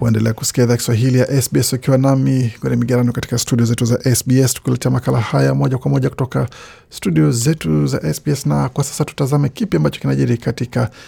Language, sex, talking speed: Swahili, male, 175 wpm